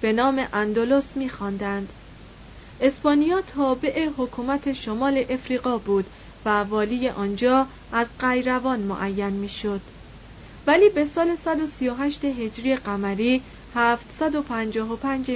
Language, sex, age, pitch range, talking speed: Persian, female, 40-59, 220-275 Hz, 95 wpm